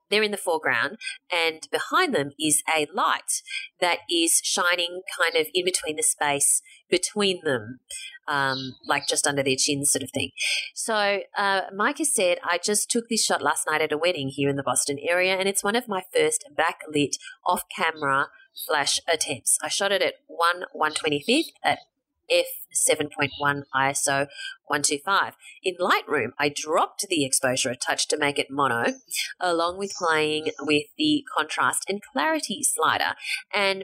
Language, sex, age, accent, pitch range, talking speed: English, female, 30-49, Australian, 150-235 Hz, 165 wpm